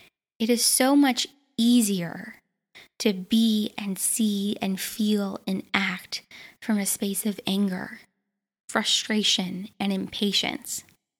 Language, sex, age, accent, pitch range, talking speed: English, female, 10-29, American, 210-250 Hz, 115 wpm